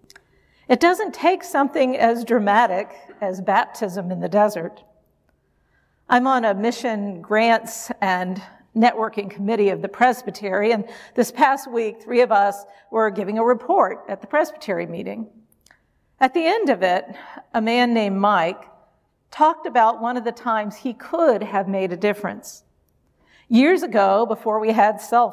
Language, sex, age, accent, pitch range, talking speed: English, female, 50-69, American, 205-265 Hz, 150 wpm